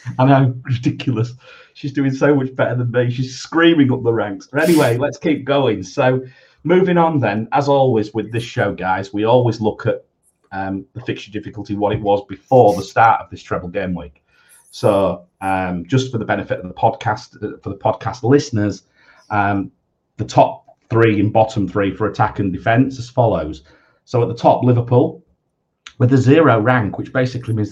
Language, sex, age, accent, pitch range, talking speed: English, male, 40-59, British, 95-130 Hz, 190 wpm